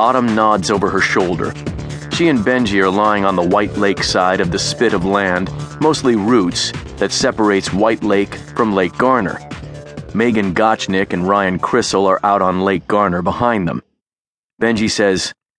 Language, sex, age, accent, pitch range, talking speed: English, male, 40-59, American, 95-120 Hz, 165 wpm